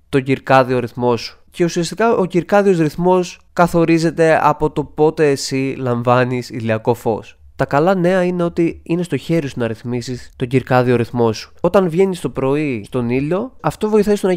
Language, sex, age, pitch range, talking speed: Greek, male, 20-39, 125-170 Hz, 175 wpm